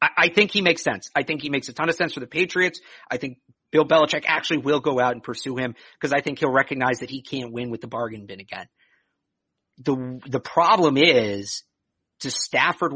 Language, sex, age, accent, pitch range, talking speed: English, male, 50-69, American, 135-180 Hz, 220 wpm